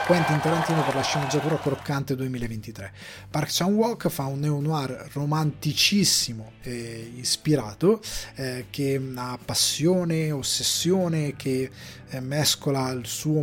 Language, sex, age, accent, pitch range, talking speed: Italian, male, 30-49, native, 125-155 Hz, 110 wpm